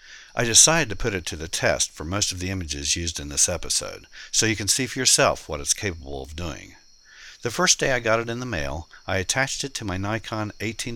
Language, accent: English, American